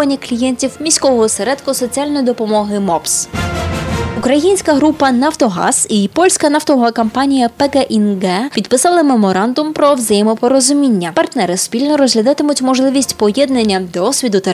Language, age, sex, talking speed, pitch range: Polish, 20-39, female, 105 wpm, 205-275 Hz